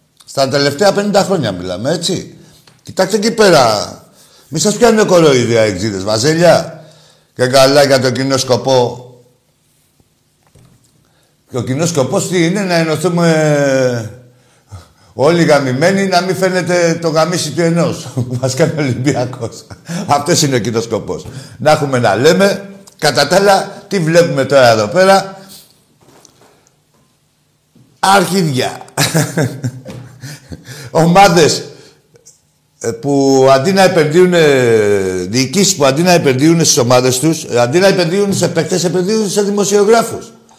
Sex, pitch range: male, 125-180 Hz